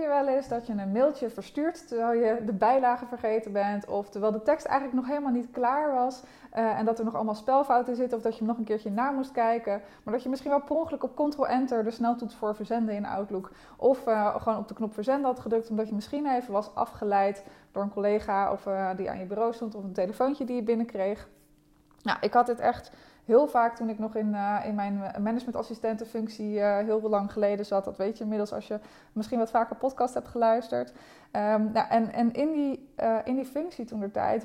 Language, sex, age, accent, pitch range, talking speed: Dutch, female, 20-39, Dutch, 210-250 Hz, 230 wpm